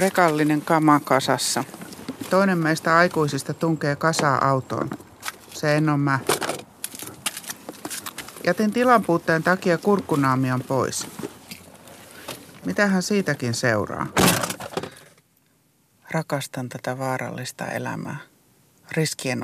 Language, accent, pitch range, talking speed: Finnish, native, 135-175 Hz, 80 wpm